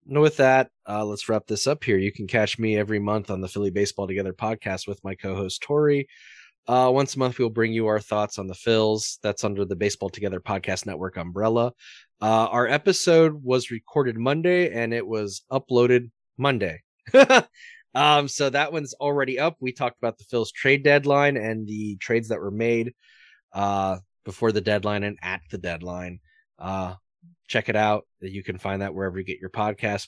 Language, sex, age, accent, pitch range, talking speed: English, male, 20-39, American, 105-135 Hz, 195 wpm